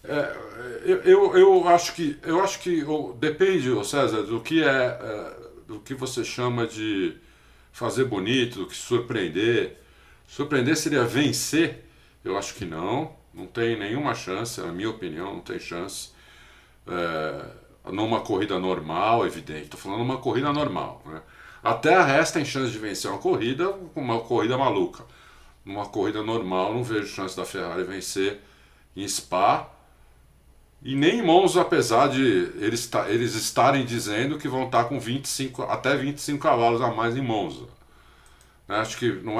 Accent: Brazilian